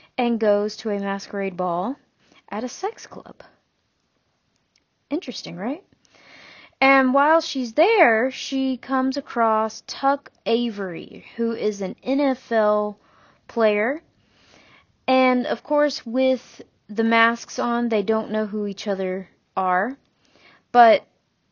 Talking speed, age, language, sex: 115 wpm, 30-49, English, female